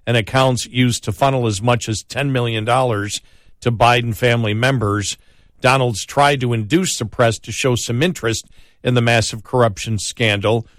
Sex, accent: male, American